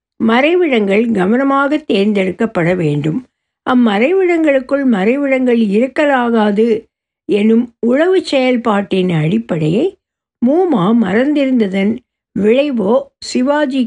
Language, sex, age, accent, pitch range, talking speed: Tamil, female, 60-79, native, 210-270 Hz, 65 wpm